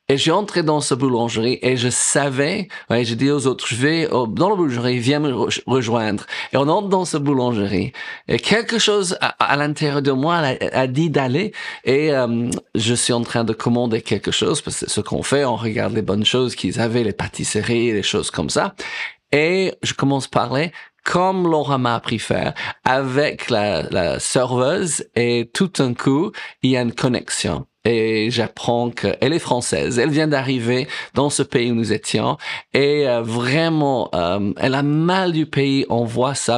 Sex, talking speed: male, 200 wpm